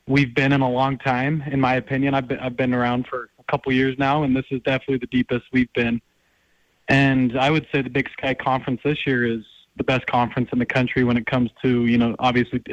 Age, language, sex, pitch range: 20-39, English, male, 125-145 Hz